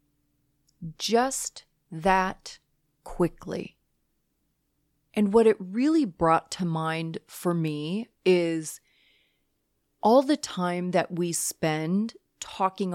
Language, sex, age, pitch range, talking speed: English, female, 30-49, 165-220 Hz, 95 wpm